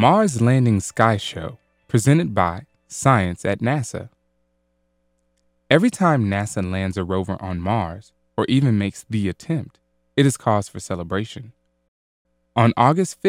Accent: American